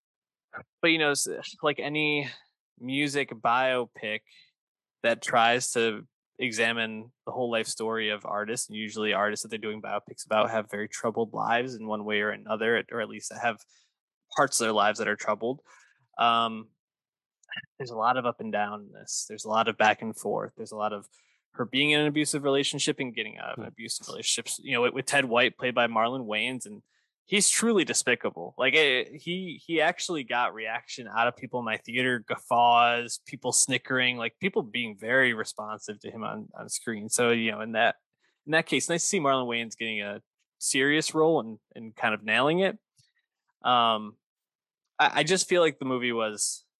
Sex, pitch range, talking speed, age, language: male, 110-150 Hz, 190 wpm, 20-39, English